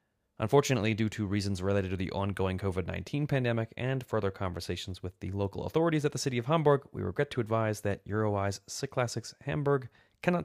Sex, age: male, 30-49